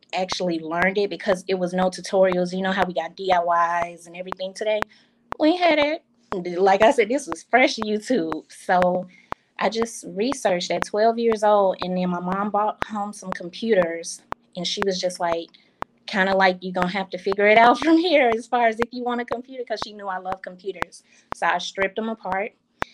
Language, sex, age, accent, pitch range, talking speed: English, female, 20-39, American, 180-210 Hz, 205 wpm